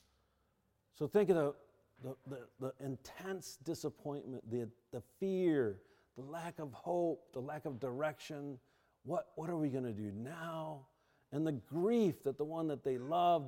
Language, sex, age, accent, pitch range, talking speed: English, male, 50-69, American, 125-170 Hz, 155 wpm